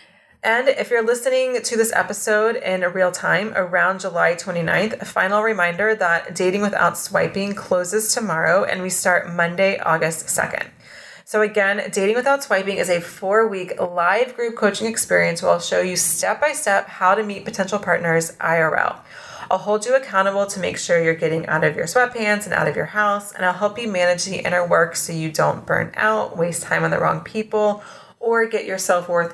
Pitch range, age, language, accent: 170-210 Hz, 30-49, English, American